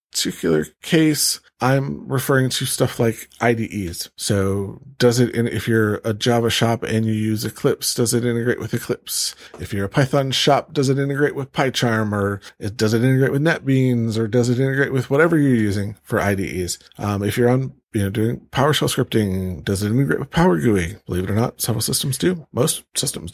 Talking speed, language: 195 wpm, English